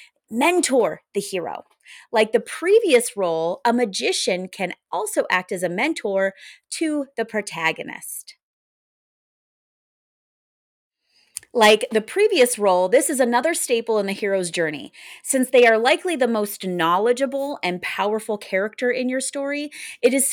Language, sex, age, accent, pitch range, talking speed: English, female, 30-49, American, 185-260 Hz, 135 wpm